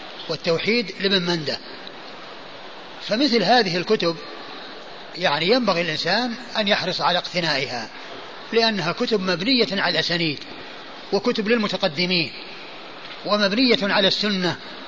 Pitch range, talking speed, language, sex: 185-235 Hz, 95 wpm, Arabic, male